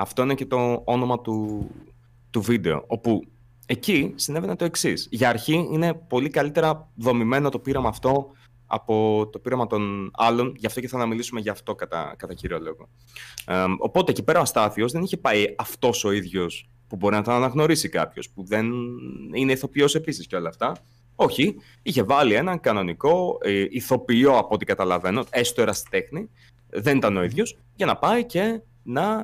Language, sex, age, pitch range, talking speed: Greek, male, 30-49, 110-140 Hz, 175 wpm